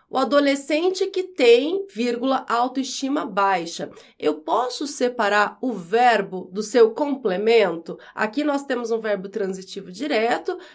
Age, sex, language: 30-49, female, Portuguese